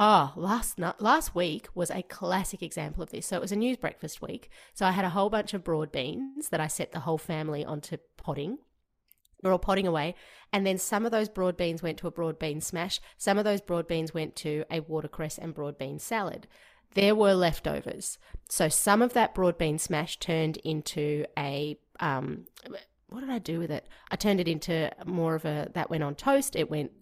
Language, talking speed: English, 215 wpm